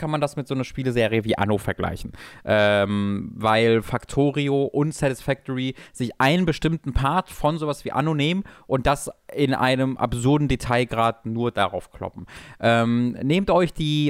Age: 20-39